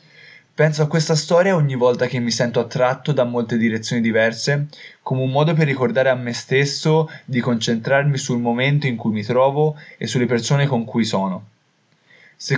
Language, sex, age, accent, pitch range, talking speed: Italian, male, 20-39, native, 120-150 Hz, 175 wpm